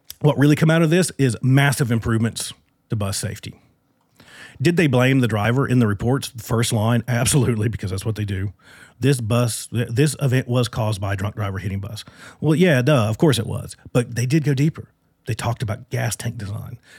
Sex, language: male, English